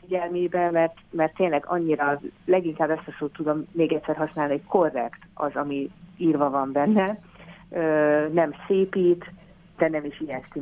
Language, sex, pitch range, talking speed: Hungarian, female, 145-175 Hz, 145 wpm